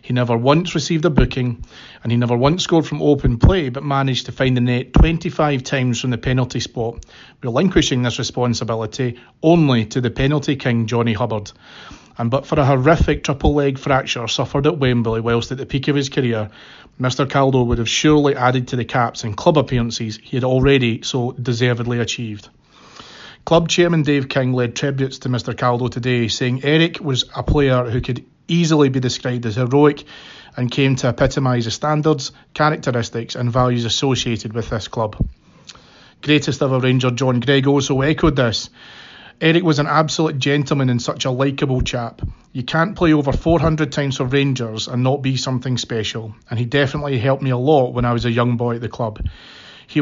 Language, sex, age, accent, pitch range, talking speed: English, male, 30-49, British, 120-145 Hz, 185 wpm